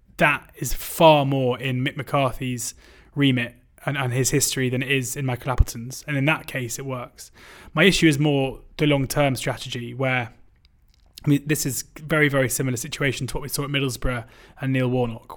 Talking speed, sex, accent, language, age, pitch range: 190 wpm, male, British, English, 20-39, 125-145 Hz